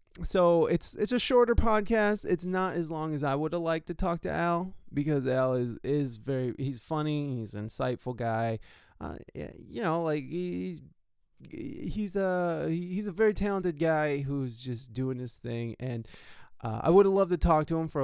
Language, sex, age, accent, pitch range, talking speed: English, male, 20-39, American, 125-175 Hz, 195 wpm